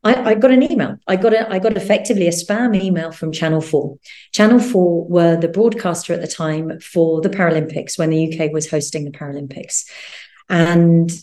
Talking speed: 190 wpm